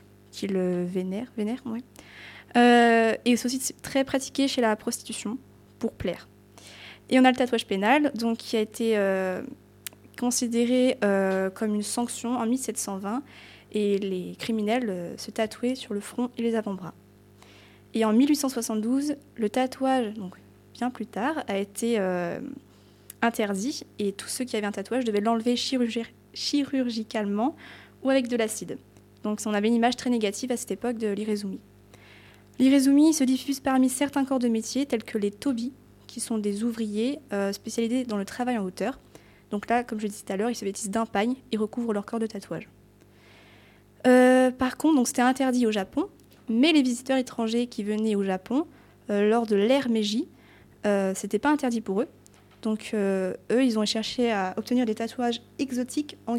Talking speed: 170 wpm